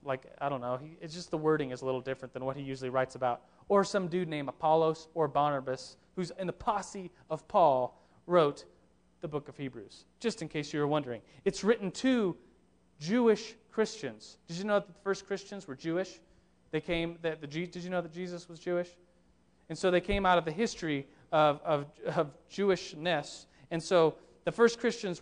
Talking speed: 200 wpm